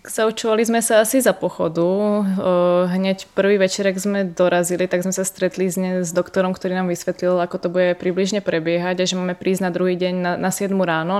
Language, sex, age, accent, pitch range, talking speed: Czech, female, 20-39, native, 175-190 Hz, 195 wpm